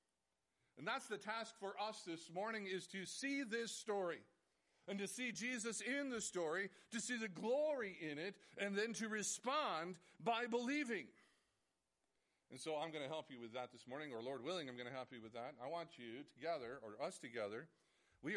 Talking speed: 200 wpm